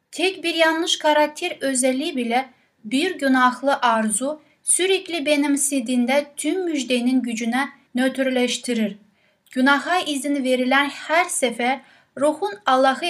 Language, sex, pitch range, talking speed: Turkish, female, 235-300 Hz, 100 wpm